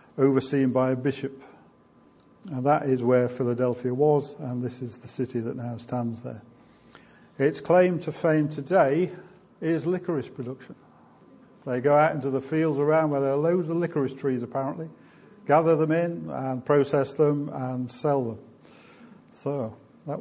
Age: 50-69